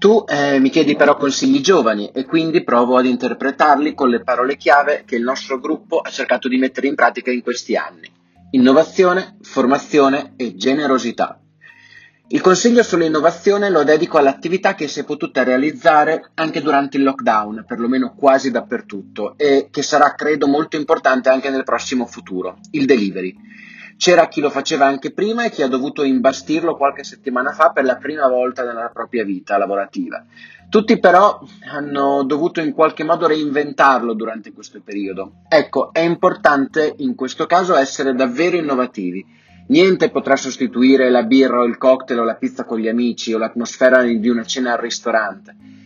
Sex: male